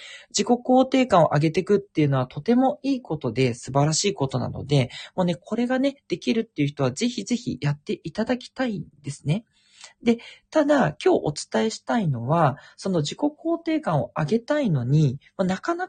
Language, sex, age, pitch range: Japanese, male, 40-59, 135-225 Hz